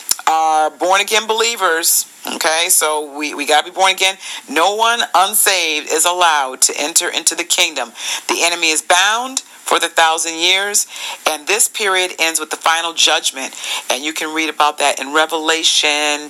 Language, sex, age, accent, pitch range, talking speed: English, female, 40-59, American, 145-185 Hz, 170 wpm